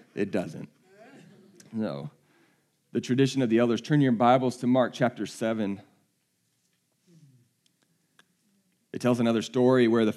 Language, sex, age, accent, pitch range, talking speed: English, male, 40-59, American, 100-120 Hz, 125 wpm